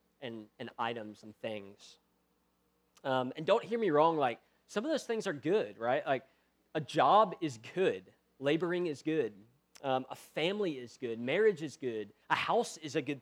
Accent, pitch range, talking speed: American, 110-175 Hz, 180 wpm